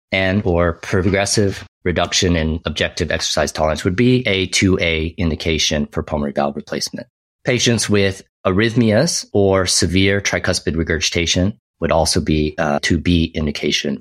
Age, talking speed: 30-49, 130 wpm